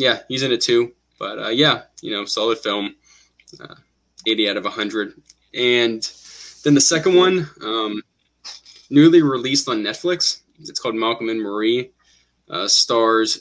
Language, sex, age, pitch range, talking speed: English, male, 10-29, 105-135 Hz, 150 wpm